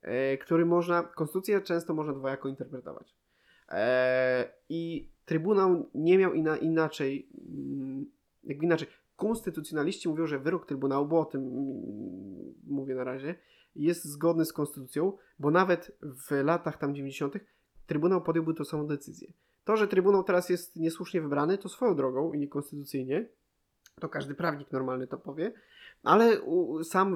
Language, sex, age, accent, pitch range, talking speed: Polish, male, 20-39, native, 140-170 Hz, 135 wpm